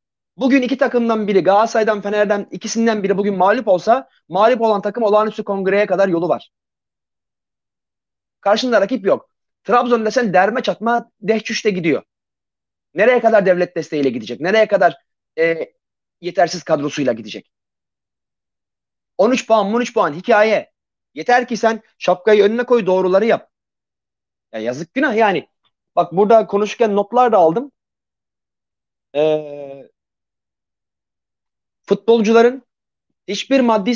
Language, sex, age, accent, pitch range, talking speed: Turkish, male, 30-49, native, 180-235 Hz, 120 wpm